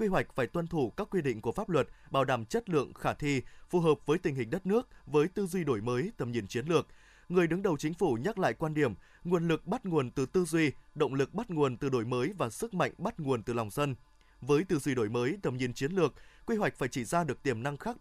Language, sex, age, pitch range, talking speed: Vietnamese, male, 20-39, 135-185 Hz, 275 wpm